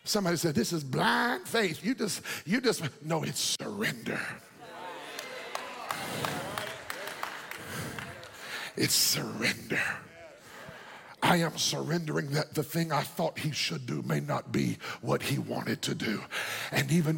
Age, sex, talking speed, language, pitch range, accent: 50-69, male, 125 wpm, English, 150-200 Hz, American